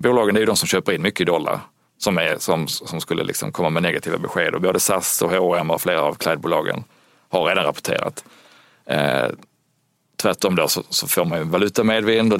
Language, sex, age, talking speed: Swedish, male, 30-49, 205 wpm